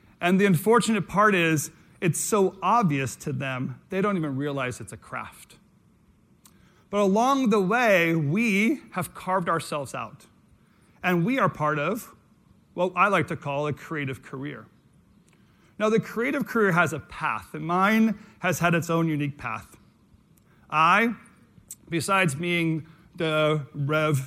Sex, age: male, 40-59